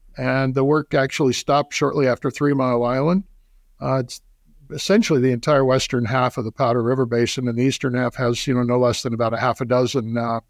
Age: 60-79